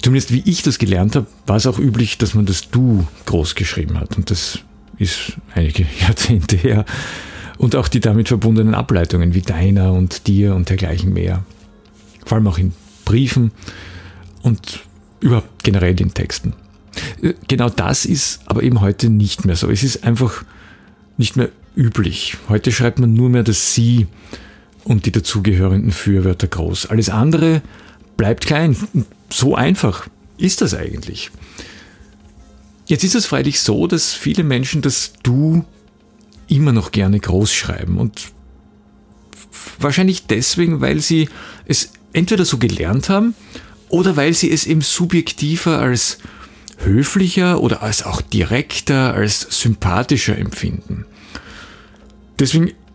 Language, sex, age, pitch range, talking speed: German, male, 50-69, 95-130 Hz, 140 wpm